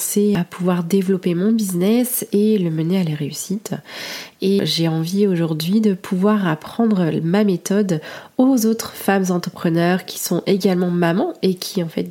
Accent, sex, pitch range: French, female, 170-200 Hz